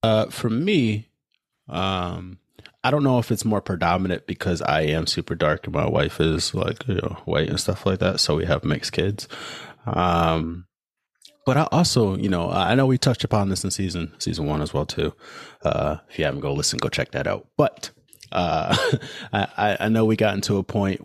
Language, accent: English, American